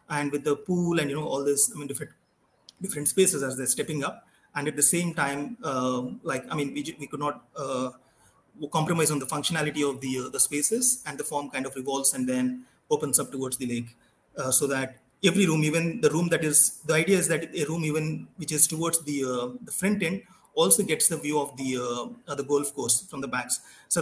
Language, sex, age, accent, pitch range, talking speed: English, male, 30-49, Indian, 140-170 Hz, 235 wpm